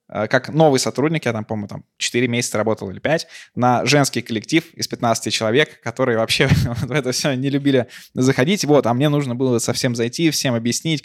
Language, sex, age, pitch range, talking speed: Russian, male, 20-39, 110-130 Hz, 190 wpm